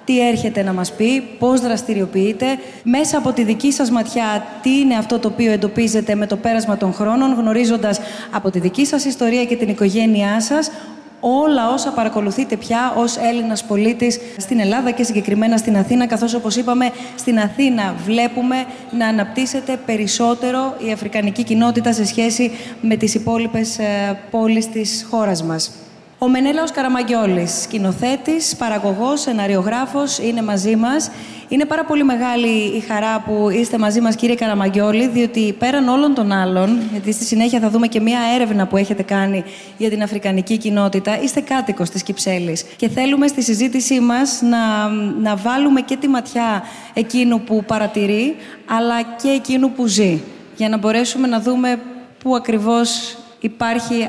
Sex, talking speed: female, 155 wpm